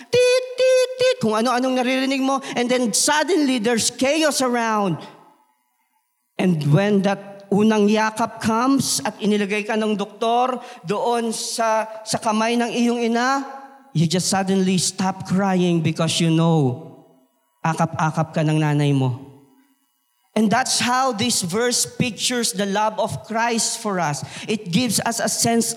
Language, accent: Filipino, native